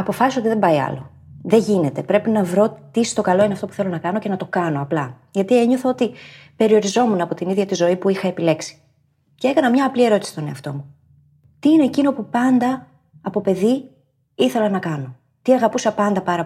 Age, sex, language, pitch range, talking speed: 30-49, female, Greek, 160-265 Hz, 210 wpm